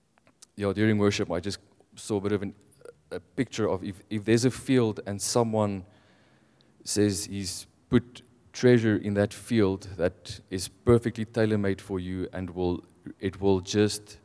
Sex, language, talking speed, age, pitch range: male, English, 160 wpm, 20-39, 95-110 Hz